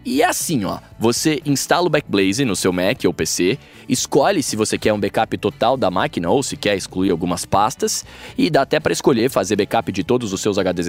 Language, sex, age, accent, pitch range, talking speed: Portuguese, male, 20-39, Brazilian, 100-150 Hz, 220 wpm